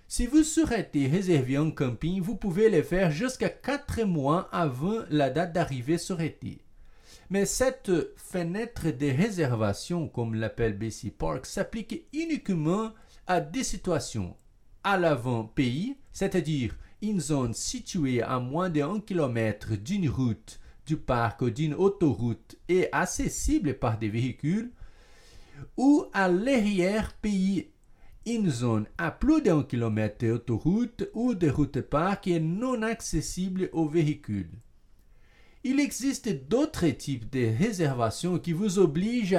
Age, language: 50-69, French